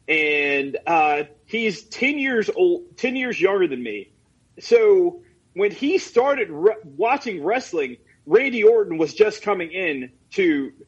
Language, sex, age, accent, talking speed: English, male, 30-49, American, 140 wpm